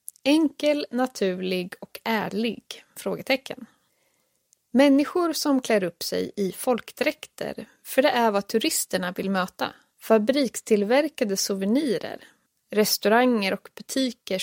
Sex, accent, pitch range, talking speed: female, native, 195-255 Hz, 100 wpm